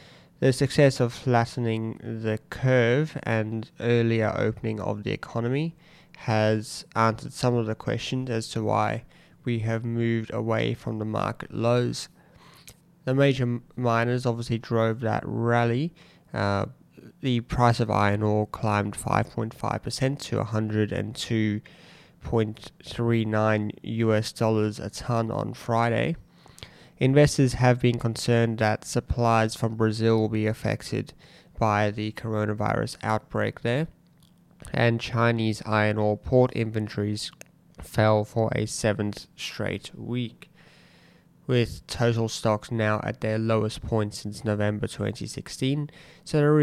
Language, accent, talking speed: English, Australian, 120 wpm